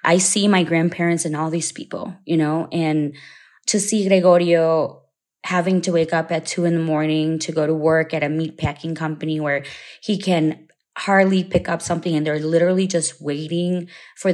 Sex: female